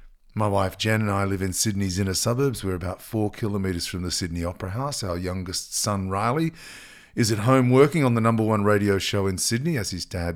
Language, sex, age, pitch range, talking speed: English, male, 40-59, 95-130 Hz, 220 wpm